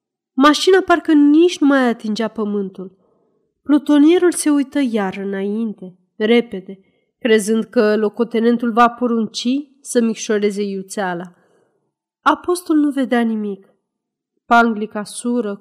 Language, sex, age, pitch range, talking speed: Romanian, female, 30-49, 205-255 Hz, 105 wpm